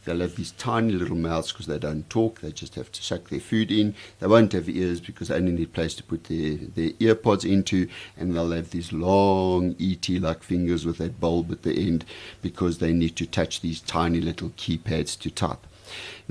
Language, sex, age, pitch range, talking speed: English, male, 50-69, 85-100 Hz, 215 wpm